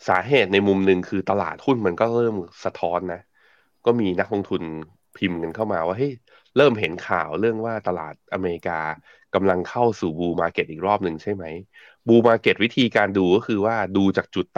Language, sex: Thai, male